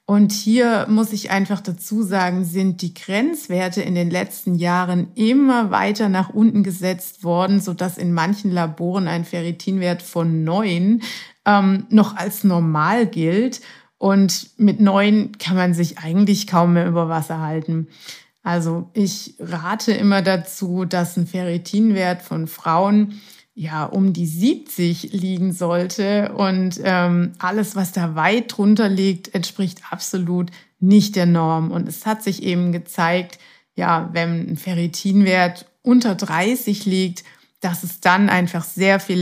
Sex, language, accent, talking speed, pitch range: female, German, German, 145 wpm, 170-200 Hz